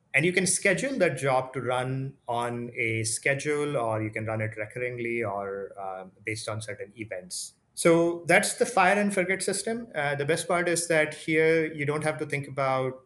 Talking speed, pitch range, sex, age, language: 200 wpm, 110-155 Hz, male, 30-49, English